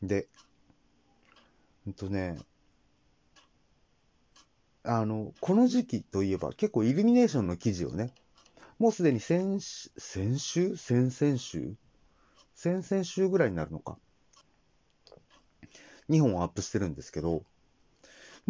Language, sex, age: Japanese, male, 40-59